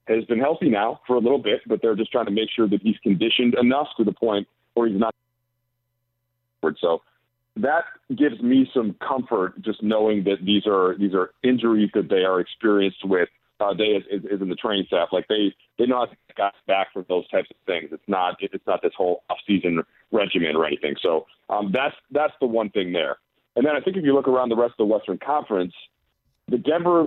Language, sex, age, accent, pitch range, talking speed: English, male, 40-59, American, 105-125 Hz, 220 wpm